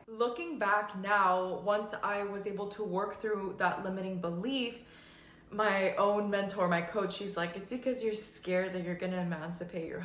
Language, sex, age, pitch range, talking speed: English, female, 20-39, 185-225 Hz, 180 wpm